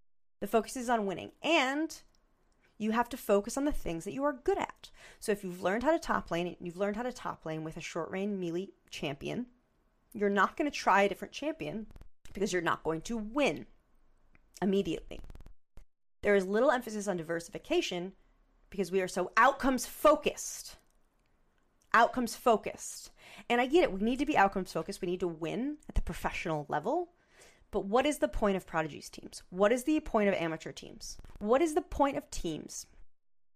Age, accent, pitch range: 30-49, American, 185-260 Hz